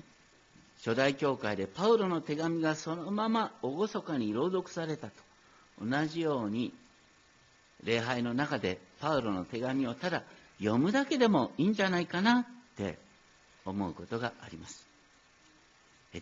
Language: Japanese